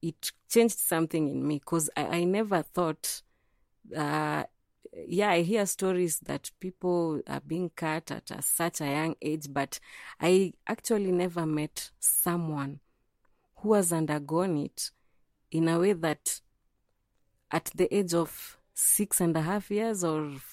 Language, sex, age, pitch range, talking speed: English, female, 30-49, 155-195 Hz, 145 wpm